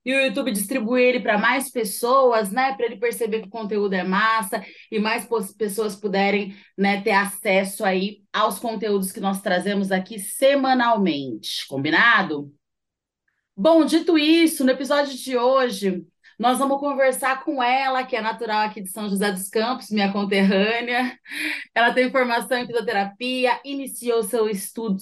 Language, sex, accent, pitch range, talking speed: Portuguese, female, Brazilian, 205-260 Hz, 155 wpm